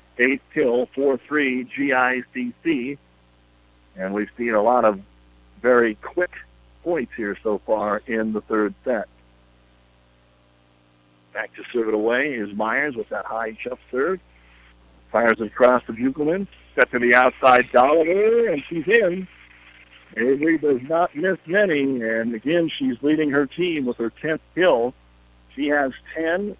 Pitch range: 100-145 Hz